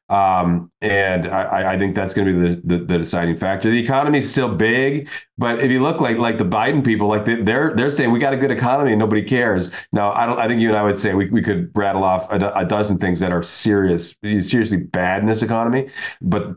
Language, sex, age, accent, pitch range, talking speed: English, male, 40-59, American, 95-120 Hz, 245 wpm